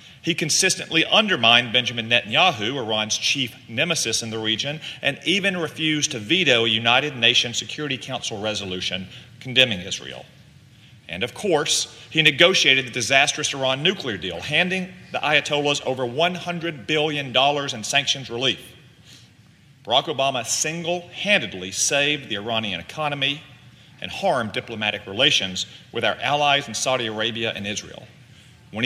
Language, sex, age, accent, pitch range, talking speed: English, male, 40-59, American, 115-150 Hz, 130 wpm